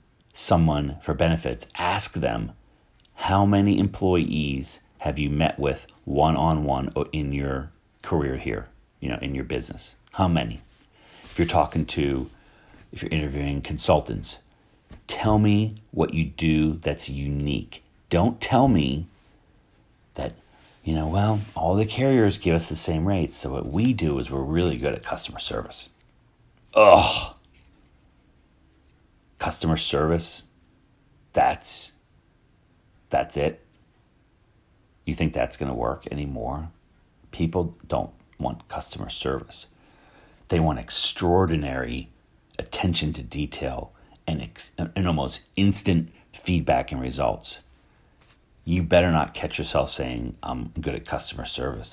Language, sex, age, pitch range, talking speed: English, male, 40-59, 70-95 Hz, 125 wpm